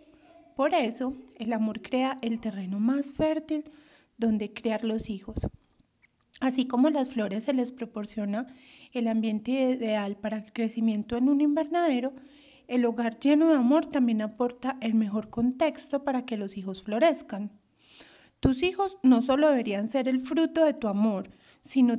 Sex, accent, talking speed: female, Colombian, 155 wpm